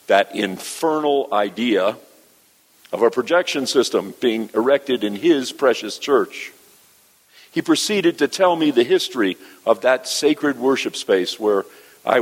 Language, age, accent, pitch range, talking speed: English, 50-69, American, 110-145 Hz, 135 wpm